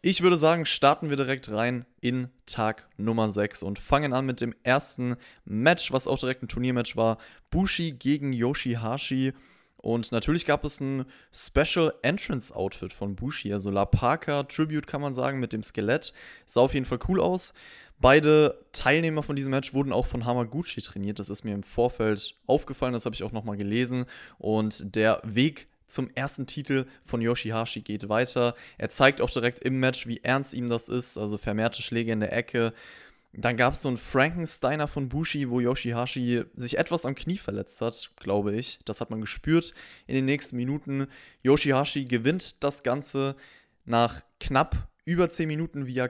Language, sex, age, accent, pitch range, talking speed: German, male, 20-39, German, 115-145 Hz, 180 wpm